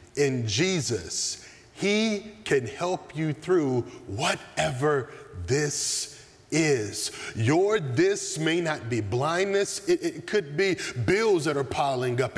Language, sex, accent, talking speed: Dutch, male, American, 120 wpm